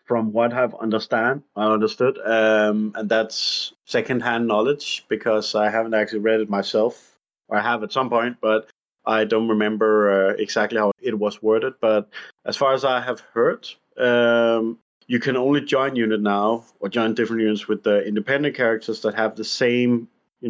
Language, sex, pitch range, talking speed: English, male, 105-120 Hz, 180 wpm